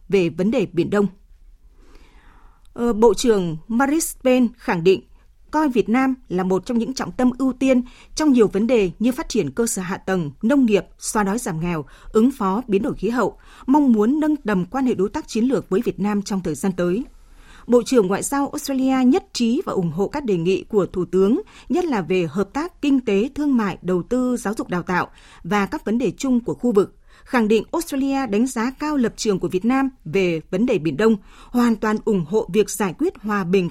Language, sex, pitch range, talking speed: Vietnamese, female, 195-260 Hz, 225 wpm